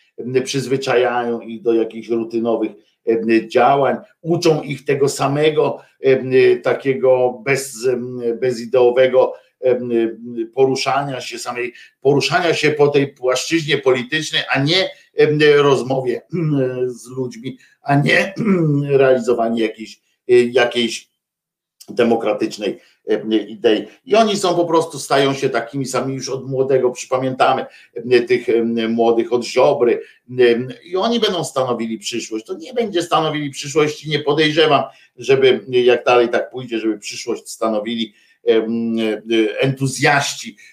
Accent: native